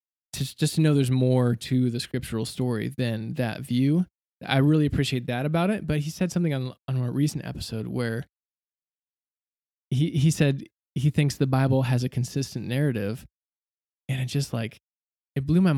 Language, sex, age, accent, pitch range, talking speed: English, male, 20-39, American, 125-150 Hz, 180 wpm